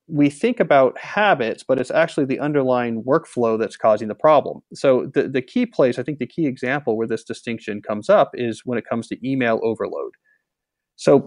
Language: English